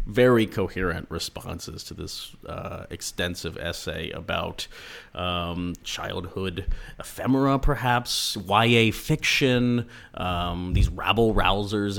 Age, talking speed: 30-49, 90 wpm